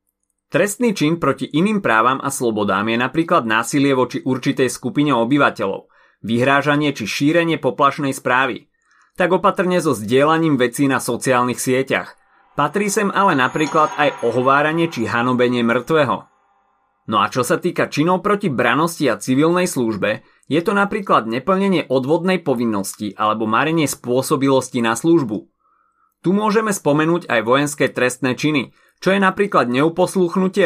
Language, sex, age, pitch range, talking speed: Slovak, male, 30-49, 120-165 Hz, 135 wpm